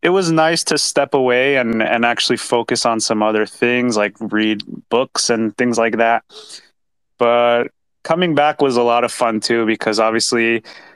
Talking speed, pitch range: 175 wpm, 110-130 Hz